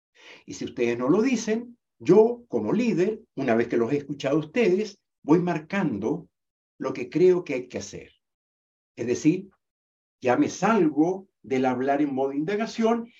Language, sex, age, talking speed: Spanish, male, 60-79, 165 wpm